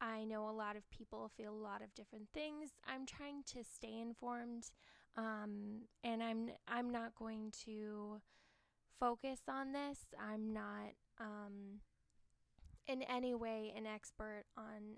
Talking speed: 145 wpm